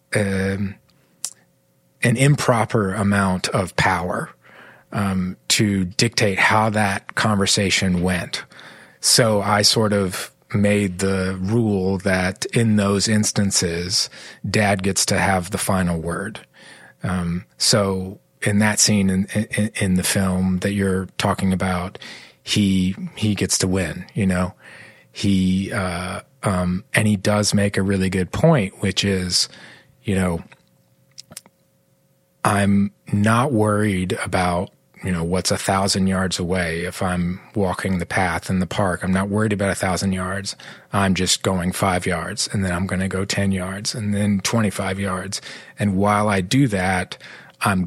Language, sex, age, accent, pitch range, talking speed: English, male, 30-49, American, 95-105 Hz, 145 wpm